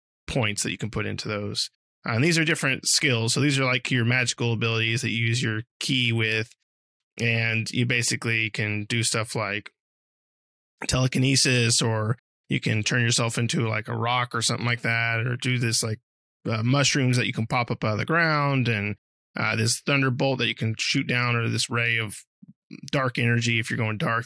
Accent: American